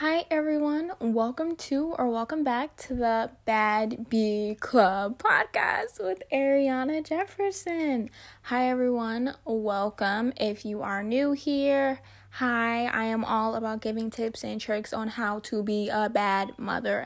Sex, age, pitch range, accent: female, 10-29, 215-275 Hz, American